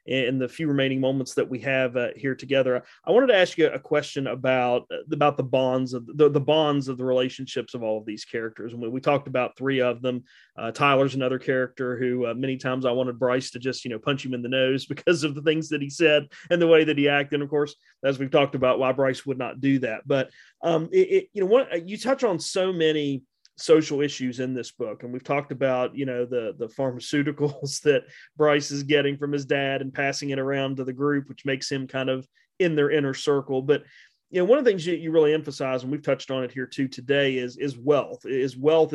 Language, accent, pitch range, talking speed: English, American, 130-145 Hz, 250 wpm